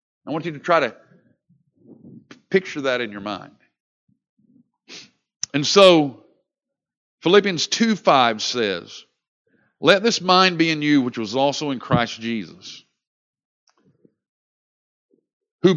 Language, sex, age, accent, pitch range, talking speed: English, male, 50-69, American, 135-220 Hz, 115 wpm